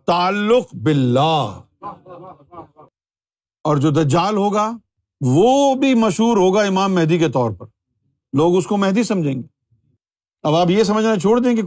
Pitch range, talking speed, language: 120-185 Hz, 145 wpm, Urdu